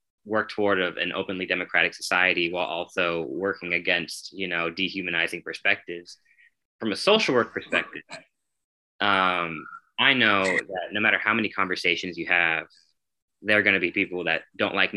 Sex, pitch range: male, 90-125 Hz